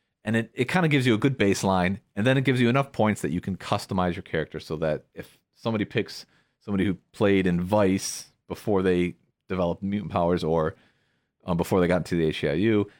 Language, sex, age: English, male, 40-59